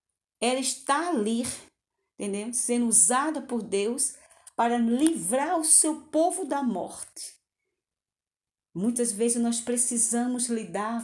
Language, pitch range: Portuguese, 205-245 Hz